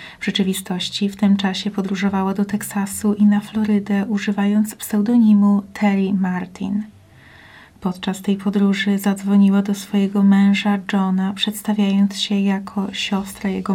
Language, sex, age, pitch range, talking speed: Polish, female, 30-49, 195-205 Hz, 120 wpm